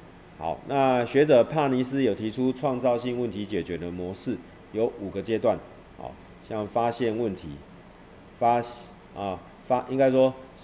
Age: 30-49